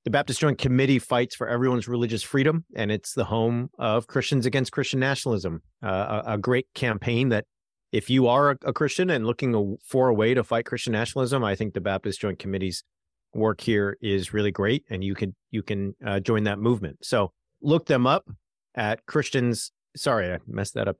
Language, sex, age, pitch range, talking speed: English, male, 40-59, 110-145 Hz, 195 wpm